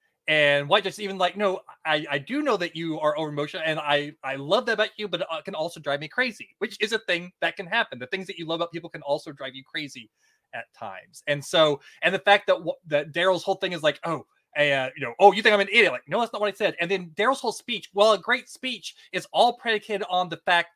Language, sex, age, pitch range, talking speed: English, male, 20-39, 155-200 Hz, 275 wpm